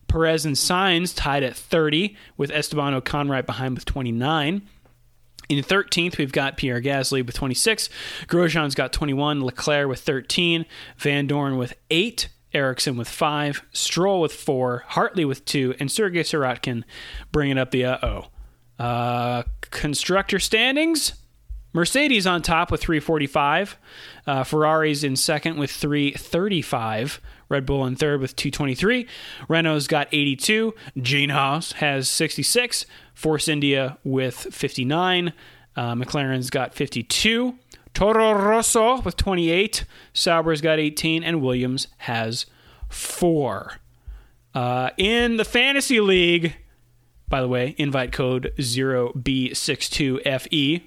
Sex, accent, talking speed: male, American, 125 wpm